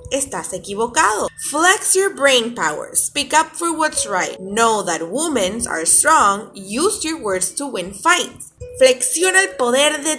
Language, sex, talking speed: Spanish, female, 155 wpm